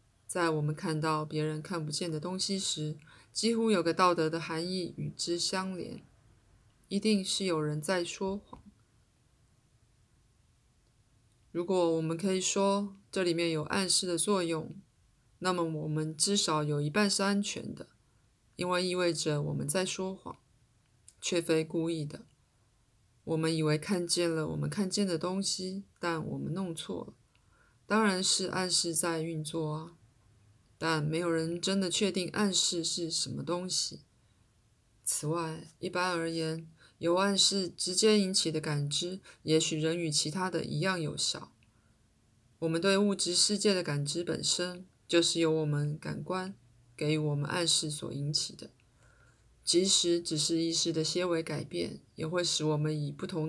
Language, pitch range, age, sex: Chinese, 150-180 Hz, 20-39, female